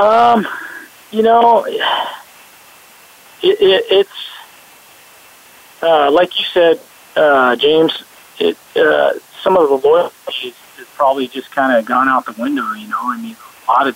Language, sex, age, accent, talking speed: English, male, 40-59, American, 145 wpm